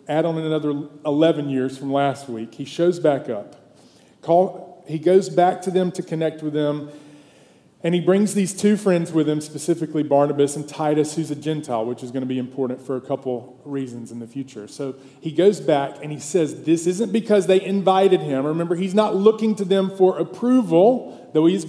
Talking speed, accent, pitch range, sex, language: 200 wpm, American, 145-185 Hz, male, English